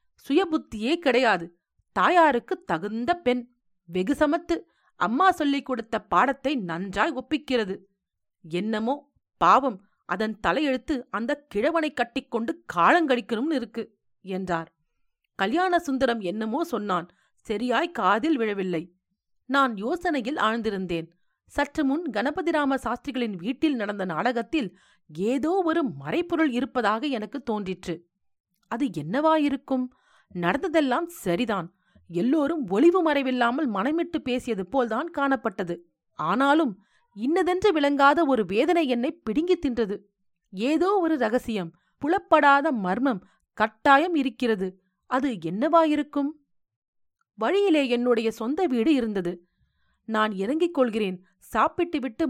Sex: female